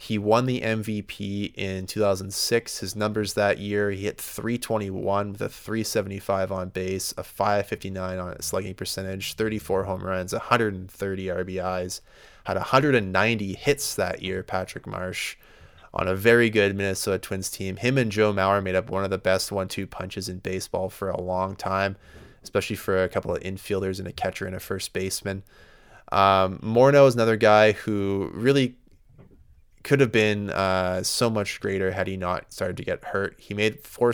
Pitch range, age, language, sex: 95-110 Hz, 20-39, English, male